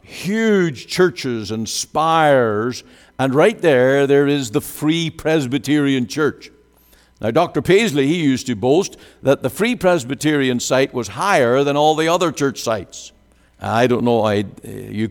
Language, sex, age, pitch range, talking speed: English, male, 60-79, 110-150 Hz, 145 wpm